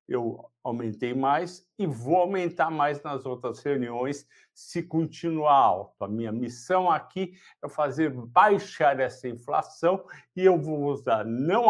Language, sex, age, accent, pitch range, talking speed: Portuguese, male, 60-79, Brazilian, 130-170 Hz, 140 wpm